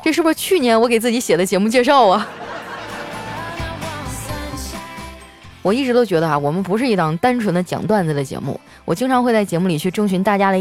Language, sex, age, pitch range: Chinese, female, 20-39, 175-245 Hz